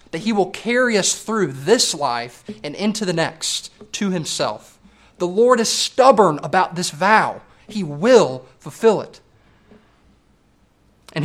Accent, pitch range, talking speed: American, 150-200 Hz, 140 wpm